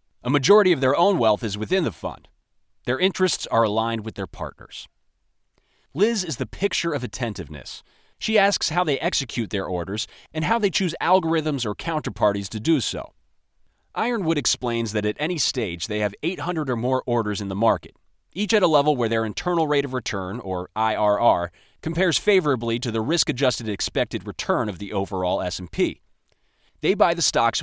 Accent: American